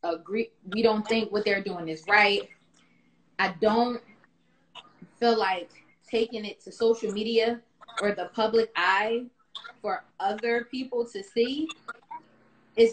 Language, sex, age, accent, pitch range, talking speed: English, female, 20-39, American, 205-265 Hz, 130 wpm